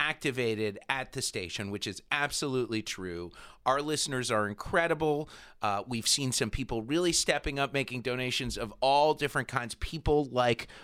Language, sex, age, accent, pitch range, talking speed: English, male, 30-49, American, 110-150 Hz, 155 wpm